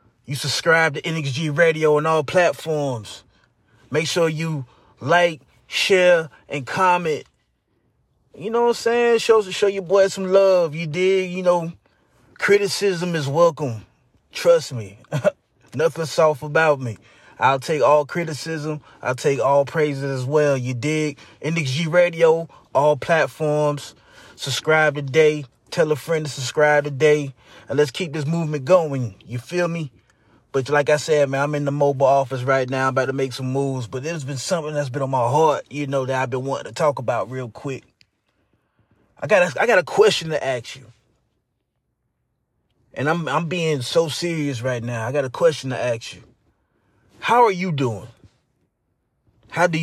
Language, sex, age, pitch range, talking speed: English, male, 20-39, 130-170 Hz, 165 wpm